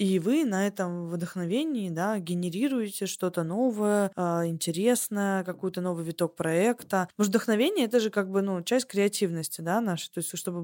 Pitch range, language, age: 180-220 Hz, Russian, 20-39